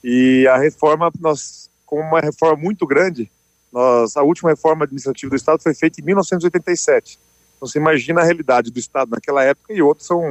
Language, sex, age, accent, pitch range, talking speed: Portuguese, male, 40-59, Brazilian, 130-165 Hz, 185 wpm